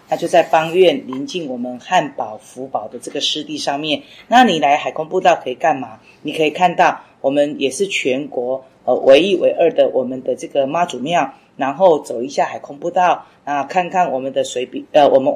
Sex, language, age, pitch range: female, Chinese, 30-49, 135-180 Hz